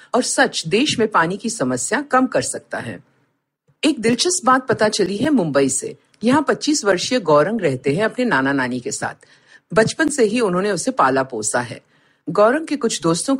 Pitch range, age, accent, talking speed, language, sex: 140-240 Hz, 50-69, native, 140 wpm, Hindi, female